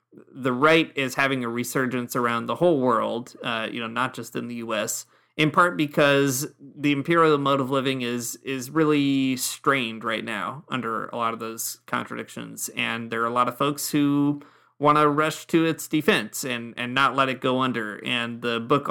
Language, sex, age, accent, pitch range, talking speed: English, male, 30-49, American, 115-145 Hz, 195 wpm